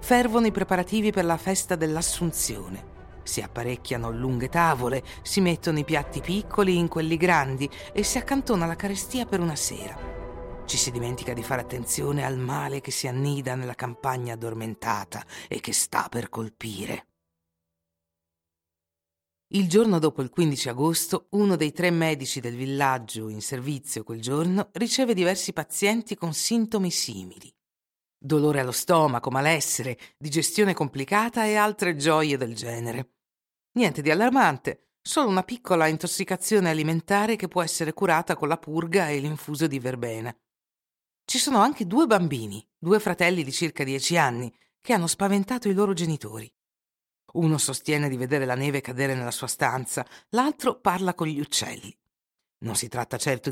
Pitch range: 125-185 Hz